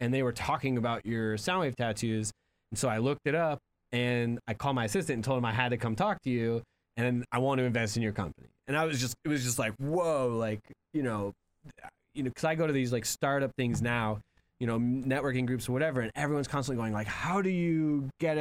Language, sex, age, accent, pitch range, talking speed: English, male, 20-39, American, 110-130 Hz, 245 wpm